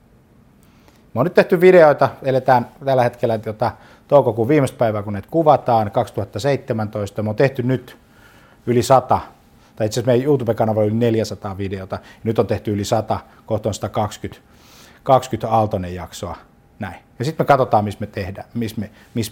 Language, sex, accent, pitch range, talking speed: Finnish, male, native, 105-135 Hz, 160 wpm